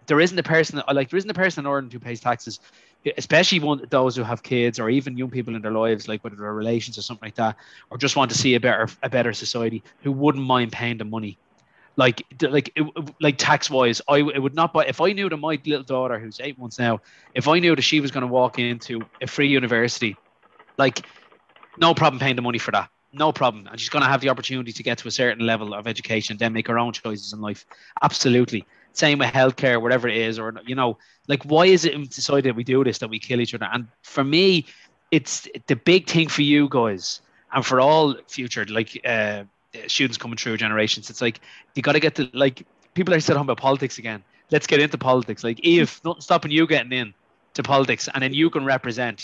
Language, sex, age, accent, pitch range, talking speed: English, male, 20-39, Irish, 115-150 Hz, 235 wpm